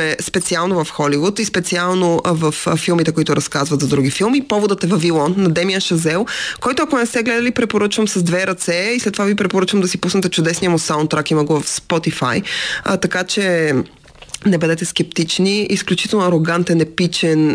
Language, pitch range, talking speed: Bulgarian, 155-195 Hz, 175 wpm